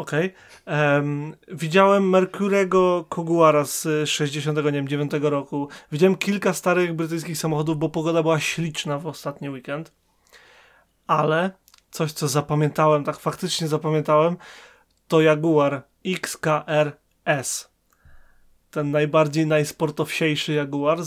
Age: 30-49